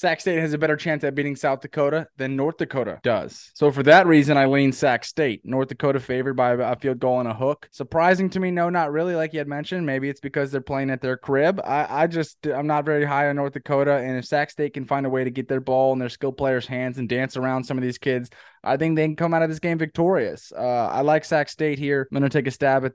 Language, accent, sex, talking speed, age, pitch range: English, American, male, 280 wpm, 20-39, 130-155 Hz